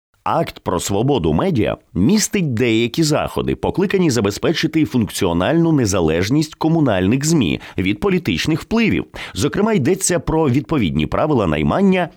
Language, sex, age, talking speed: English, male, 30-49, 110 wpm